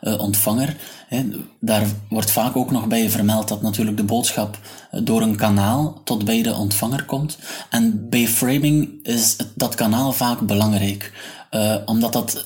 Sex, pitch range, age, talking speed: male, 105-125 Hz, 20-39, 155 wpm